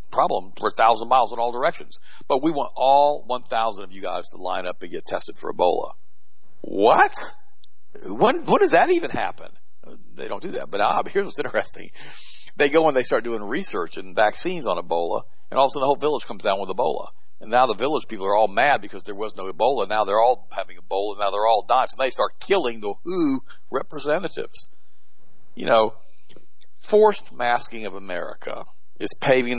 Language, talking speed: English, 205 wpm